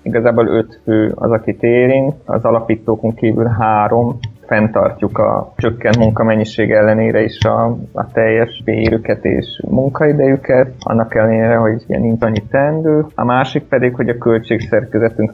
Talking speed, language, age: 140 wpm, Hungarian, 20-39